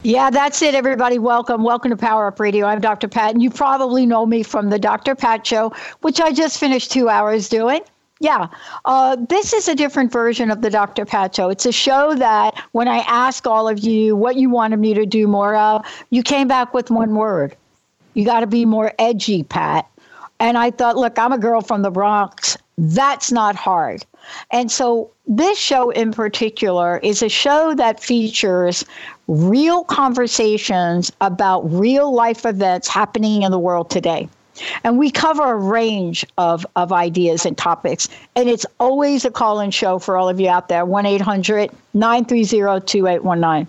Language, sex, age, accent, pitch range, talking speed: English, female, 60-79, American, 205-250 Hz, 180 wpm